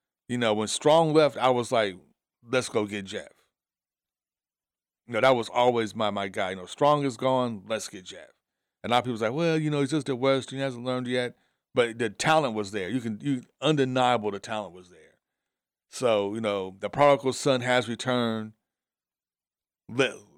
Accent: American